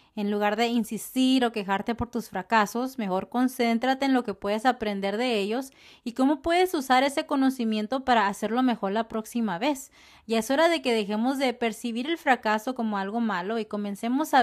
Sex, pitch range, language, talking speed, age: female, 210-255 Hz, English, 190 wpm, 30-49